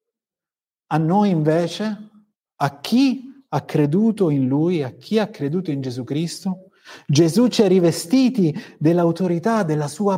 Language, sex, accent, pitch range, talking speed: Italian, male, native, 155-215 Hz, 135 wpm